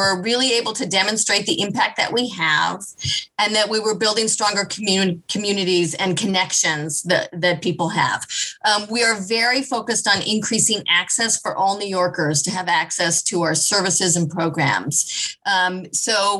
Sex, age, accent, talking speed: female, 30-49, American, 165 wpm